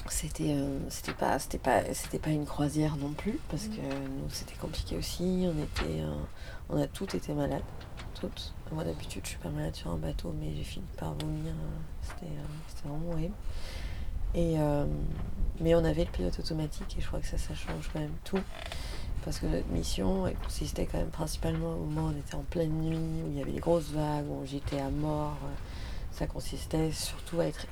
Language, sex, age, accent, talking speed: French, female, 20-39, French, 210 wpm